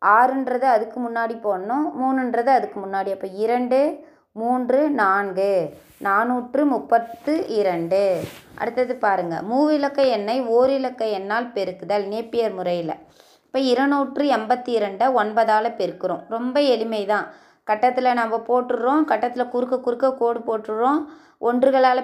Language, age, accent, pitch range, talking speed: Tamil, 20-39, native, 220-260 Hz, 100 wpm